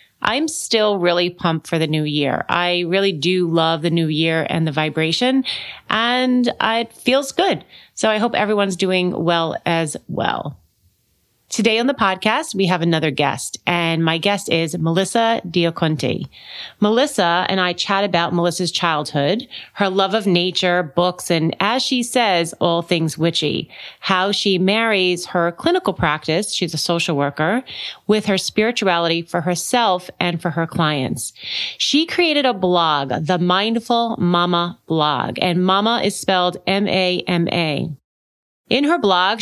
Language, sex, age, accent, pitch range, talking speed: English, female, 30-49, American, 165-200 Hz, 150 wpm